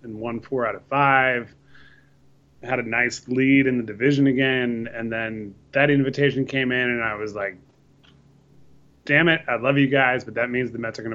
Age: 30-49